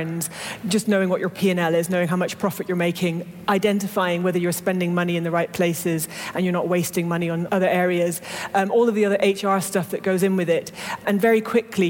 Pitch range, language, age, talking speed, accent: 180-205 Hz, English, 30-49, 220 wpm, British